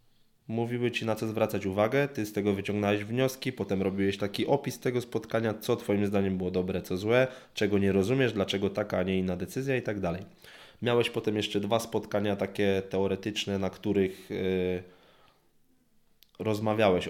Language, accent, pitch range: Polish, native, 95-120 Hz